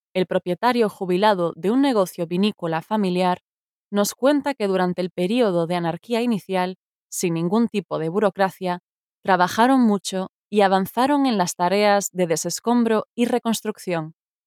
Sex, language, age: female, Spanish, 20-39